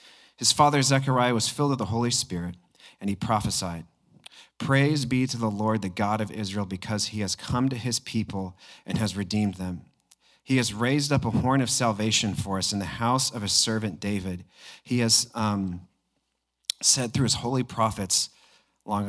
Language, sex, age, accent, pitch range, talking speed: English, male, 40-59, American, 105-130 Hz, 180 wpm